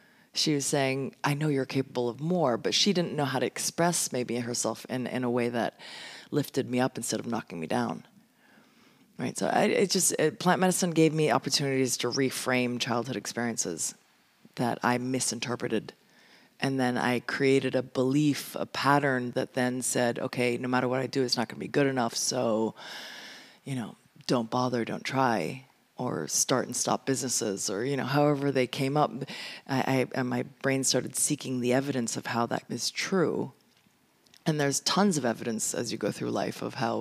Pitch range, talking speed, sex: 125-150 Hz, 190 wpm, female